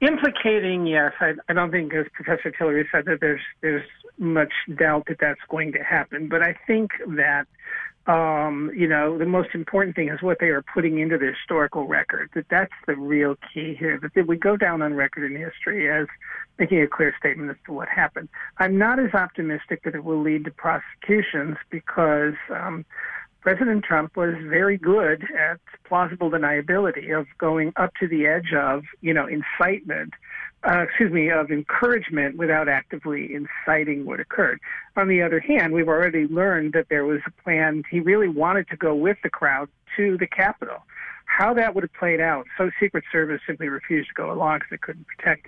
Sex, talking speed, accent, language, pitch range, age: male, 195 wpm, American, English, 155-185 Hz, 50-69